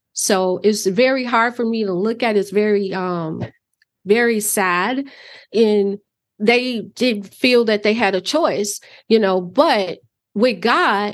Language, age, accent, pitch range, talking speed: English, 30-49, American, 200-240 Hz, 155 wpm